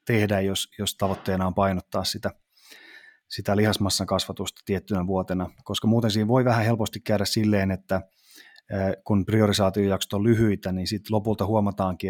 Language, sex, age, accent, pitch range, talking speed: Finnish, male, 30-49, native, 95-110 Hz, 145 wpm